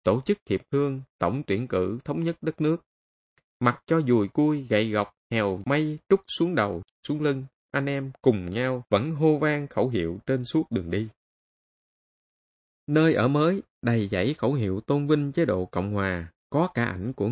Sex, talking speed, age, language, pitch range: male, 185 wpm, 20-39, Vietnamese, 100-145 Hz